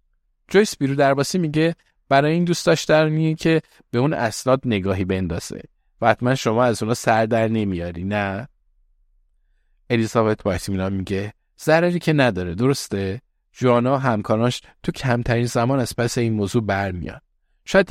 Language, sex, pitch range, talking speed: Persian, male, 100-140 Hz, 135 wpm